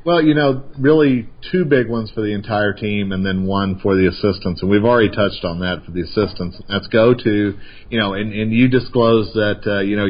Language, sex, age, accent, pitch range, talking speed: English, male, 40-59, American, 95-120 Hz, 230 wpm